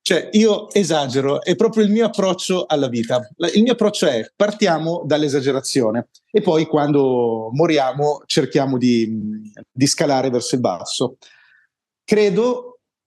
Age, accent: 30-49, native